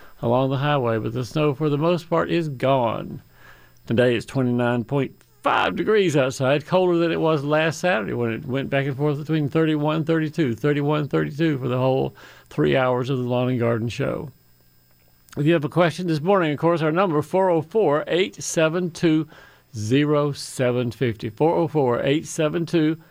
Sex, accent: male, American